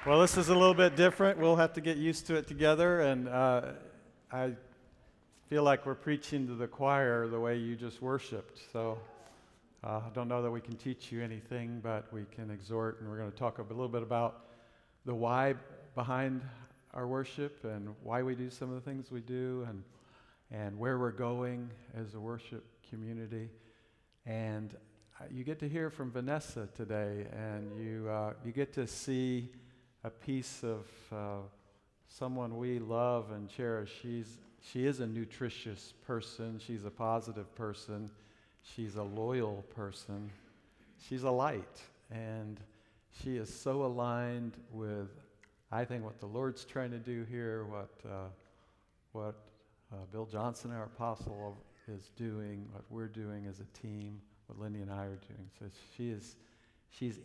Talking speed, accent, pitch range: 170 wpm, American, 105-125 Hz